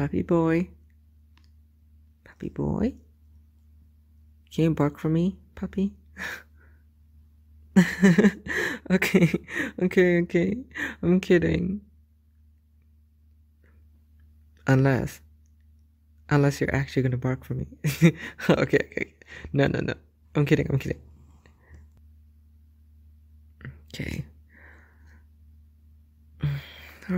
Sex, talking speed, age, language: female, 75 wpm, 20-39, English